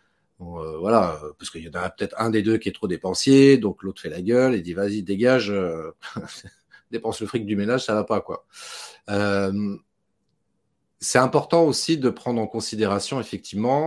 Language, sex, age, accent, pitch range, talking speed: French, male, 40-59, French, 95-115 Hz, 175 wpm